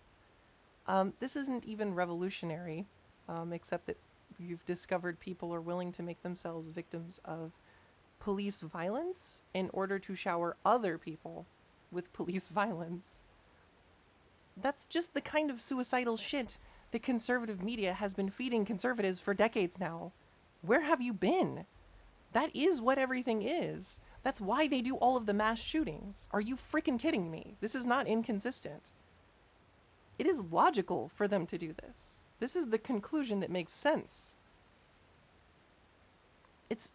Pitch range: 175-240 Hz